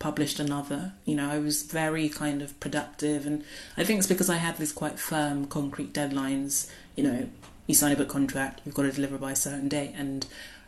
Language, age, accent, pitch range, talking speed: English, 30-49, British, 140-160 Hz, 215 wpm